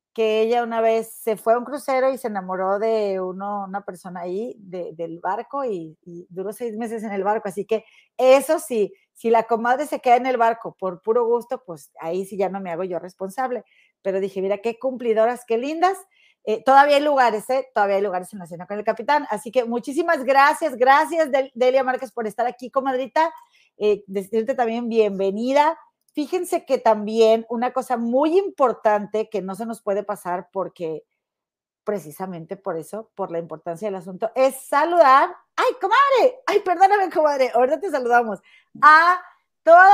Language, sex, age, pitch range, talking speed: Spanish, female, 40-59, 205-280 Hz, 185 wpm